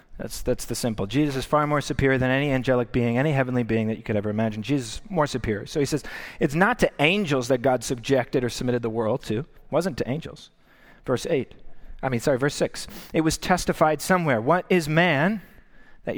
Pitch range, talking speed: 125-160 Hz, 220 wpm